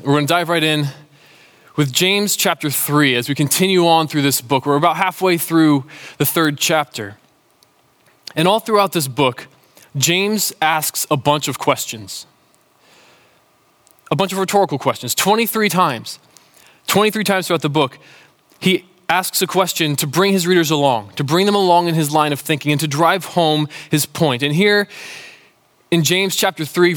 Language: English